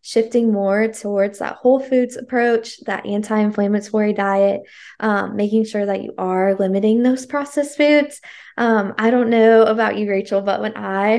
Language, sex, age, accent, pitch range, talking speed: English, female, 10-29, American, 205-240 Hz, 160 wpm